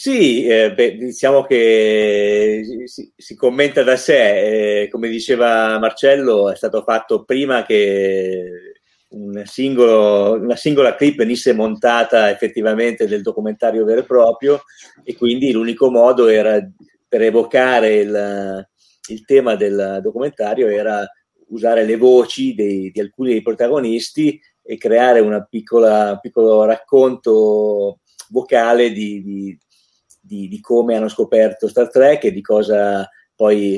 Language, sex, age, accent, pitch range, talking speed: Italian, male, 40-59, native, 105-130 Hz, 130 wpm